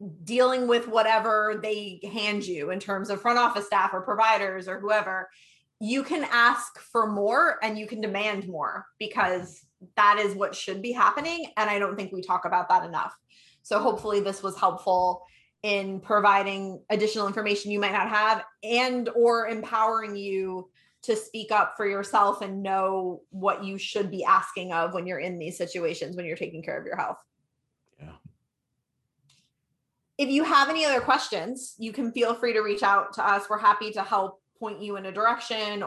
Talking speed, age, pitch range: 180 wpm, 20-39, 190-230 Hz